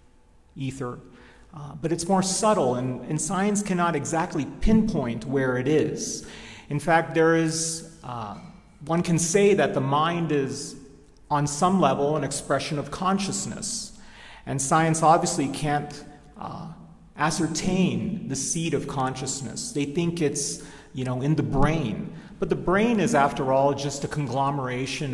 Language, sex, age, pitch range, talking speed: English, male, 40-59, 135-170 Hz, 145 wpm